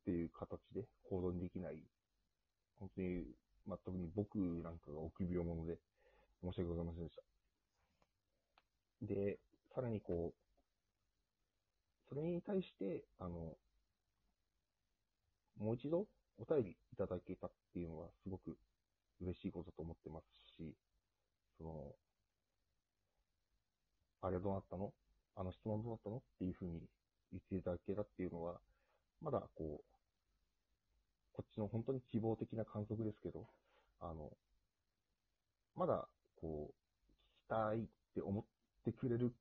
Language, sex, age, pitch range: Japanese, male, 40-59, 85-110 Hz